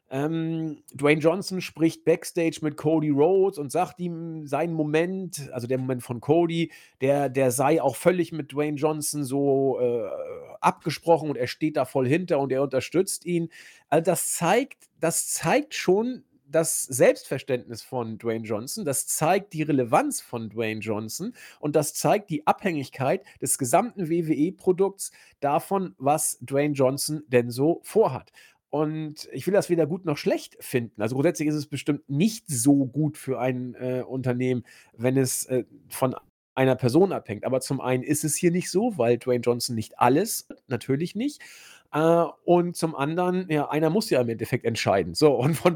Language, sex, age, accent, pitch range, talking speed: German, male, 50-69, German, 130-175 Hz, 170 wpm